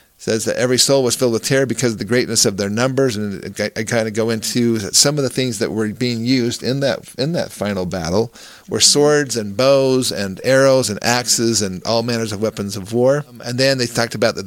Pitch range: 105-130 Hz